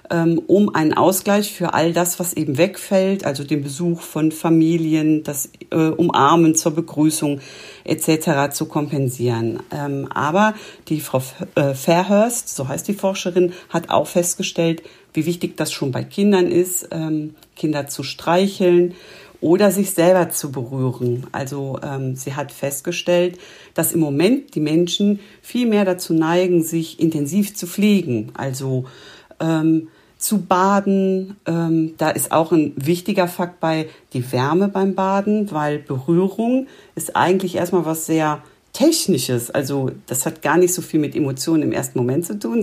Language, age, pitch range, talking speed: German, 50-69, 145-180 Hz, 140 wpm